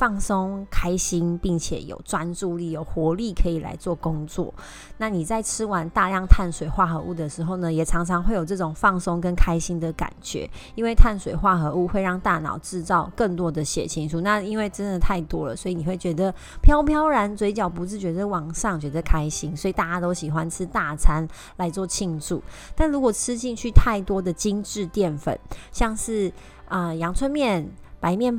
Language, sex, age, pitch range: Chinese, female, 30-49, 170-210 Hz